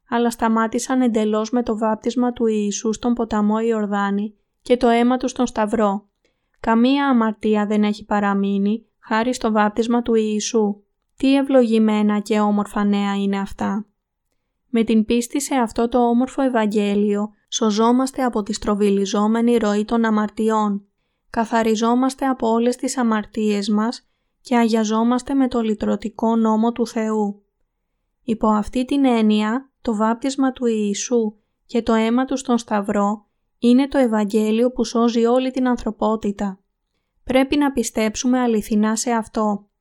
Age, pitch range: 20-39, 210-245 Hz